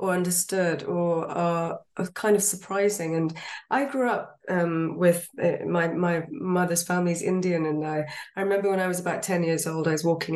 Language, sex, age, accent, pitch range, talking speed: English, female, 20-39, British, 160-195 Hz, 185 wpm